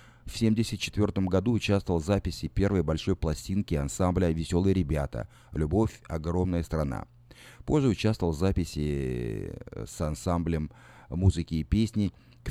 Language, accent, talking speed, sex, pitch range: Russian, native, 120 wpm, male, 80-110 Hz